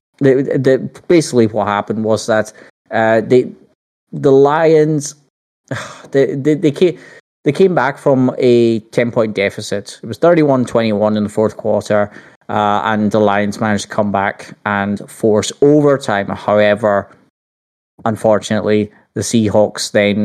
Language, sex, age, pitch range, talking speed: English, male, 20-39, 105-125 Hz, 135 wpm